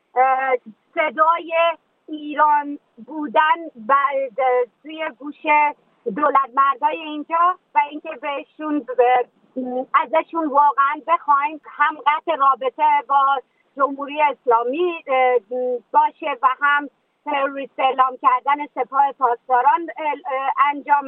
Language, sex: Persian, female